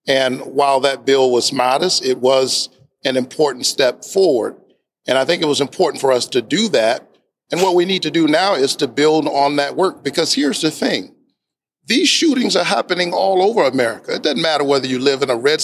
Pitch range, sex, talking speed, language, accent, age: 135-175 Hz, male, 215 wpm, English, American, 50-69